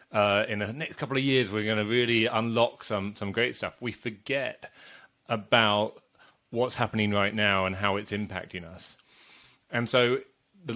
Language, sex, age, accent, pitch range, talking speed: English, male, 30-49, British, 100-120 Hz, 175 wpm